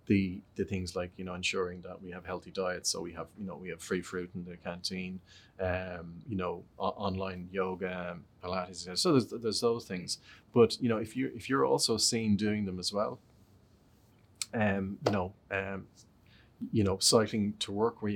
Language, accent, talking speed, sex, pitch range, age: English, Irish, 200 wpm, male, 95-110 Hz, 30-49